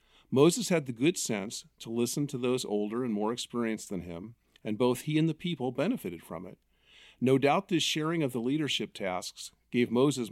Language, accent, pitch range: English, American, 110-135 Hz